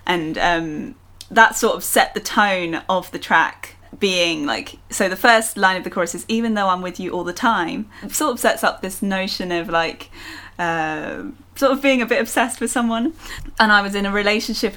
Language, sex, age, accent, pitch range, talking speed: English, female, 10-29, British, 175-225 Hz, 210 wpm